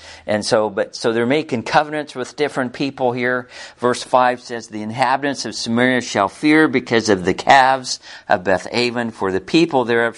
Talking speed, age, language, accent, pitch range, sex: 175 wpm, 50-69, English, American, 105-125 Hz, male